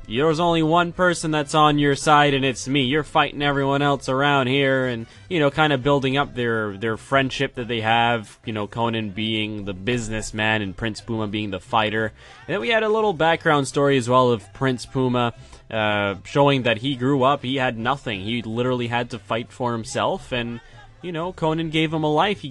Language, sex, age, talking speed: English, male, 20-39, 215 wpm